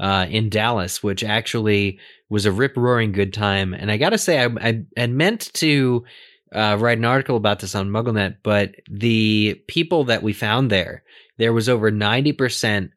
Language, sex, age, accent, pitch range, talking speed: English, male, 20-39, American, 100-120 Hz, 190 wpm